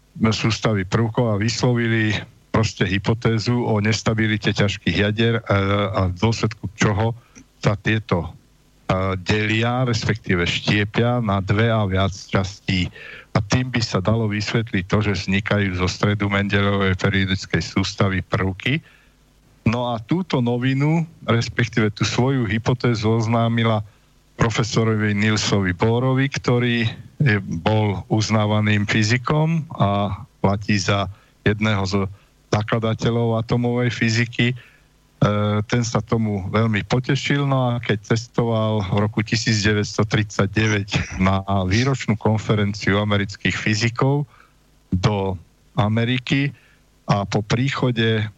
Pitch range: 100-120 Hz